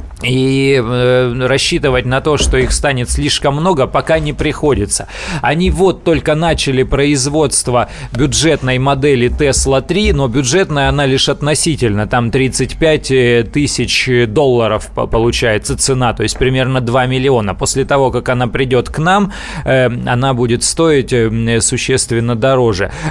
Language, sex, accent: Russian, male, native